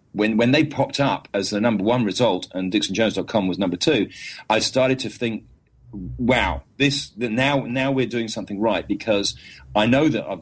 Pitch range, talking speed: 95-120 Hz, 185 wpm